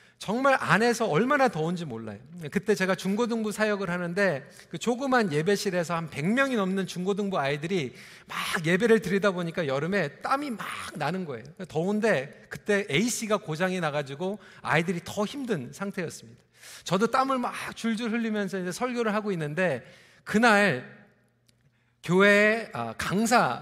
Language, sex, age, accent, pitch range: Korean, male, 40-59, native, 165-230 Hz